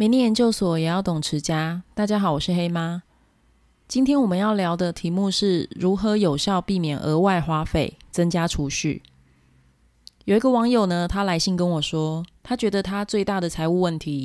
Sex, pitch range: female, 155-200 Hz